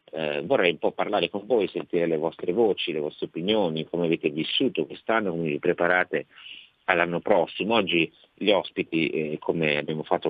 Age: 50-69